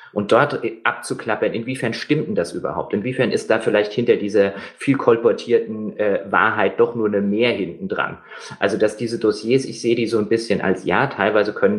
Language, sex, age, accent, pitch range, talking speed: German, male, 30-49, German, 110-155 Hz, 195 wpm